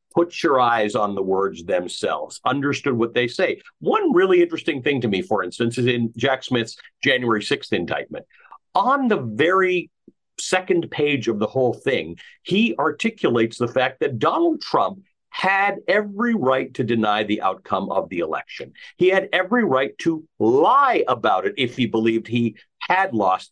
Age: 50-69